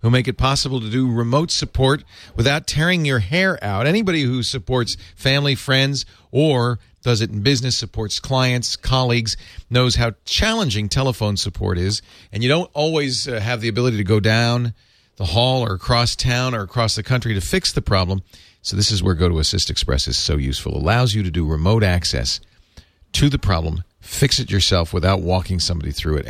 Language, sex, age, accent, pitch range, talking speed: English, male, 40-59, American, 90-130 Hz, 195 wpm